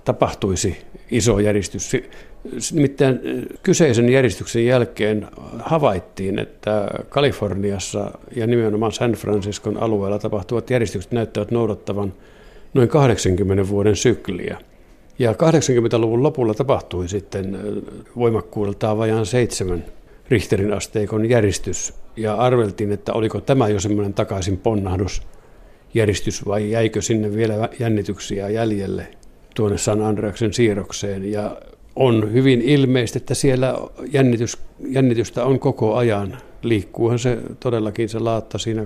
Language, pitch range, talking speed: Finnish, 105-120 Hz, 105 wpm